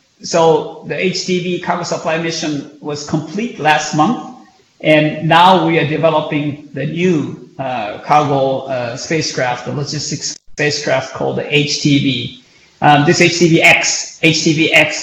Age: 50-69